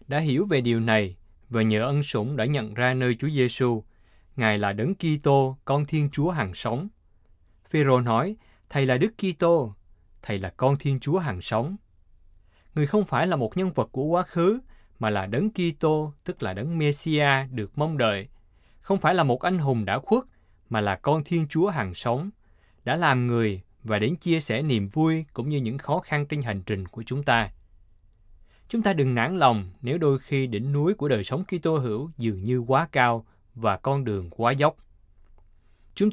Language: Vietnamese